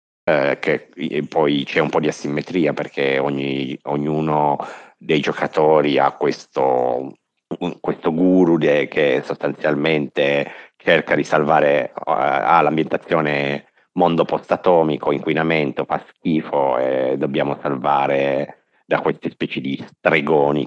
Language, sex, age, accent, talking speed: Italian, male, 50-69, native, 120 wpm